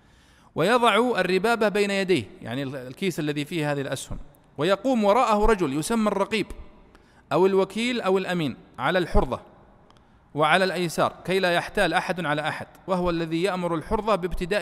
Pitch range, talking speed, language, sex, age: 150-200 Hz, 140 wpm, Arabic, male, 40-59